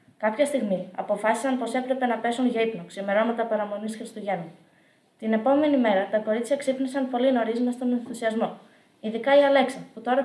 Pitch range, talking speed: 205-245 Hz, 160 wpm